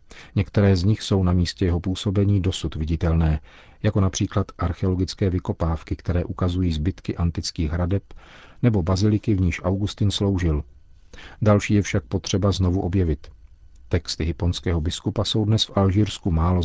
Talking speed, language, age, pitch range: 140 wpm, Czech, 40-59, 85-100 Hz